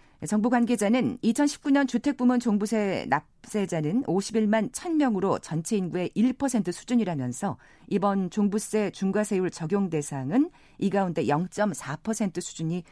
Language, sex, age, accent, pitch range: Korean, female, 40-59, native, 160-240 Hz